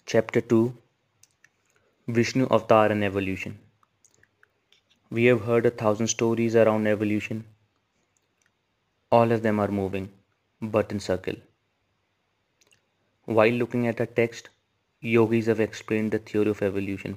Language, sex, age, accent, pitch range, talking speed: English, male, 30-49, Indian, 100-115 Hz, 120 wpm